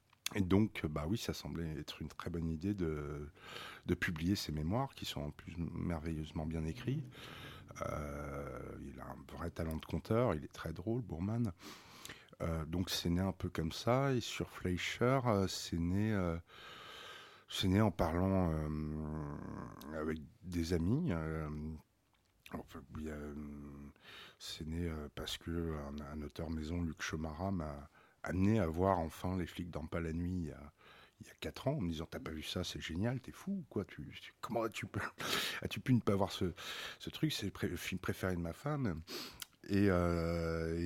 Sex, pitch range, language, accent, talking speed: male, 80-100 Hz, French, French, 185 wpm